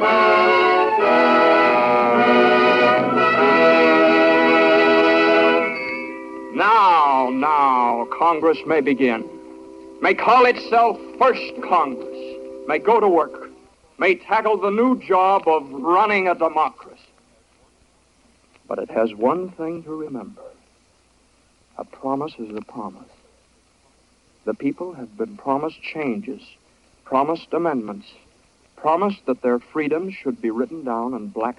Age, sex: 60-79, male